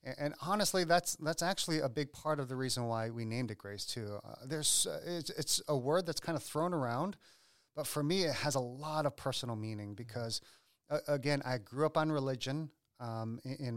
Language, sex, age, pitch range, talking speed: English, male, 30-49, 120-155 Hz, 220 wpm